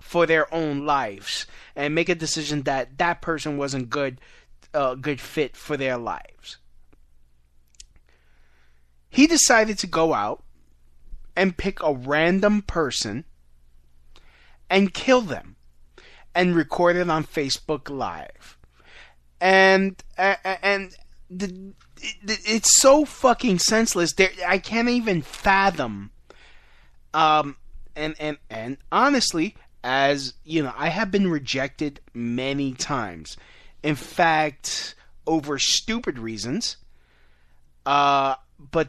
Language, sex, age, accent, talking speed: English, male, 20-39, American, 115 wpm